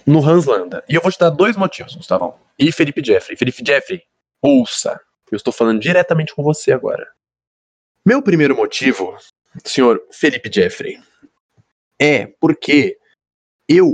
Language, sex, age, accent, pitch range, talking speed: Portuguese, male, 20-39, Brazilian, 135-210 Hz, 145 wpm